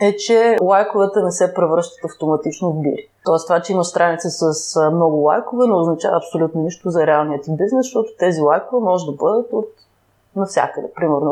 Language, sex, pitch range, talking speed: Bulgarian, female, 155-205 Hz, 180 wpm